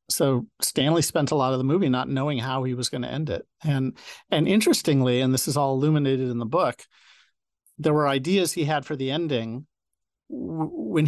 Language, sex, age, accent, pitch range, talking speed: English, male, 50-69, American, 125-150 Hz, 200 wpm